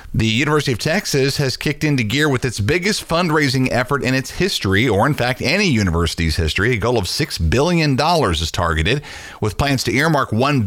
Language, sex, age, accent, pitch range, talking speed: English, male, 40-59, American, 90-125 Hz, 190 wpm